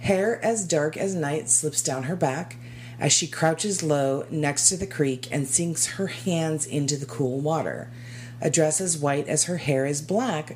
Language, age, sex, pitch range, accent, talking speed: English, 40-59, female, 120-155 Hz, American, 195 wpm